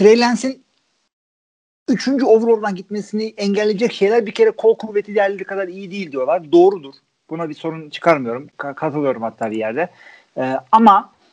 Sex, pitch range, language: male, 140-200 Hz, Turkish